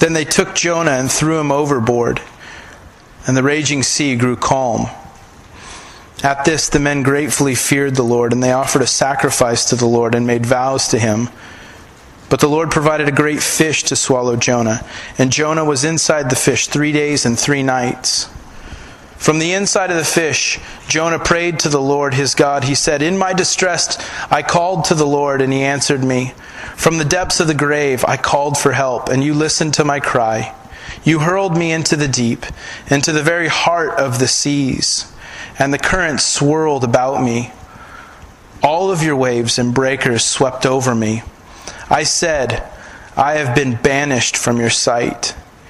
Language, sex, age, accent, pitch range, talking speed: English, male, 30-49, American, 125-155 Hz, 180 wpm